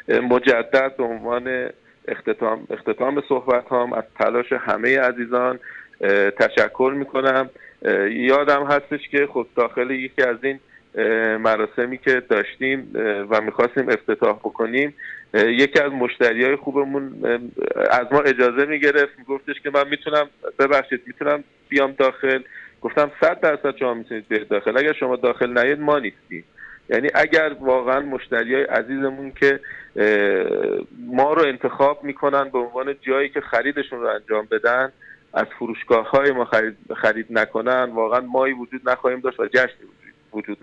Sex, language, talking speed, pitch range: male, Persian, 135 wpm, 120-140 Hz